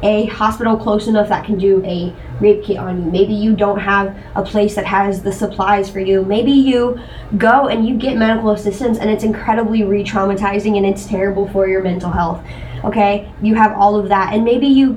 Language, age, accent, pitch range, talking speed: English, 10-29, American, 200-245 Hz, 210 wpm